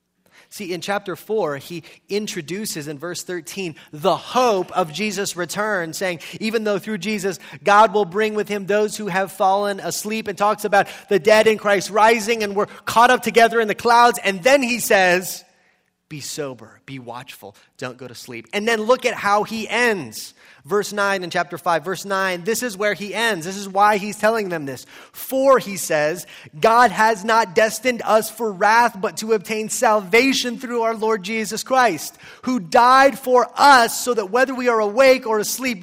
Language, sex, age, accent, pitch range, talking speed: English, male, 30-49, American, 180-240 Hz, 190 wpm